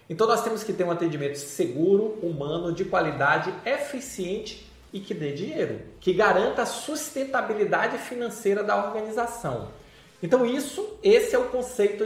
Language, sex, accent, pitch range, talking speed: Portuguese, male, Brazilian, 165-255 Hz, 145 wpm